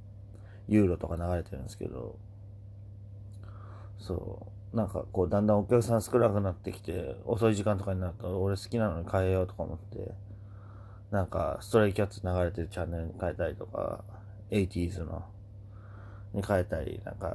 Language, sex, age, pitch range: Japanese, male, 30-49, 95-105 Hz